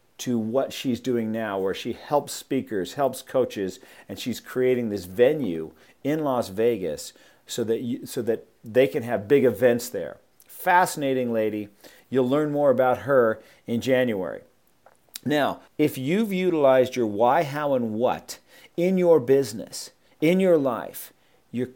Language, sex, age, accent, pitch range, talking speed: English, male, 50-69, American, 125-175 Hz, 150 wpm